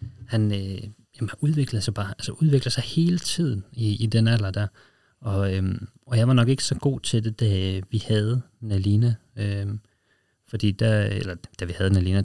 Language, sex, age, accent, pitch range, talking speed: Danish, male, 30-49, native, 100-115 Hz, 175 wpm